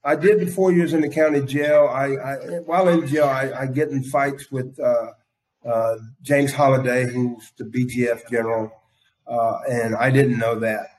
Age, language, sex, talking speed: 40-59, English, male, 180 wpm